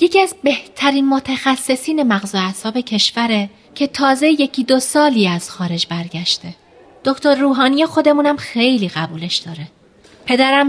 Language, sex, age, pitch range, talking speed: Persian, female, 30-49, 205-275 Hz, 130 wpm